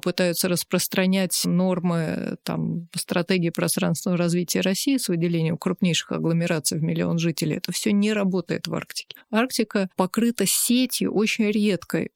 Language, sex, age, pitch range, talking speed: Russian, female, 30-49, 180-215 Hz, 130 wpm